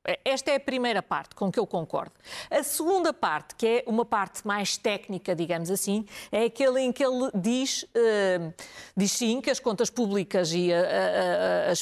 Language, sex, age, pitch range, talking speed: Portuguese, female, 50-69, 195-250 Hz, 195 wpm